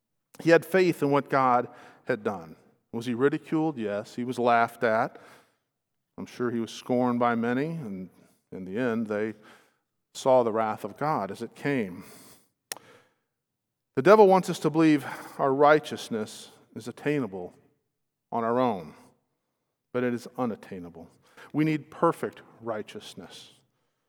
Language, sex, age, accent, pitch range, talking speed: English, male, 50-69, American, 125-155 Hz, 140 wpm